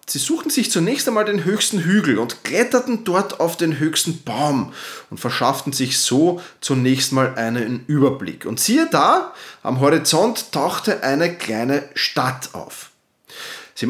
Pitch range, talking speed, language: 140-215 Hz, 145 wpm, German